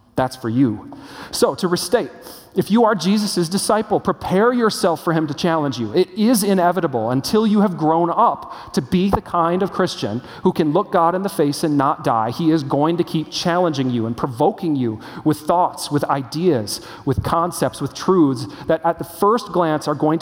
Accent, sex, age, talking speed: American, male, 40-59, 200 wpm